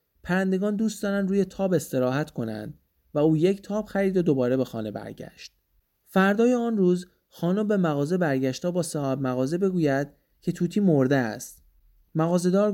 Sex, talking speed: male, 160 wpm